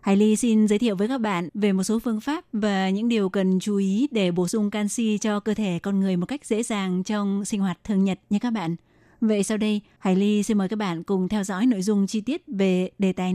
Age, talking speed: 20-39, 265 wpm